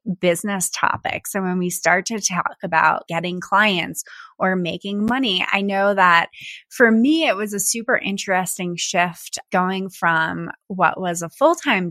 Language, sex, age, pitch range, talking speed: English, female, 20-39, 175-225 Hz, 155 wpm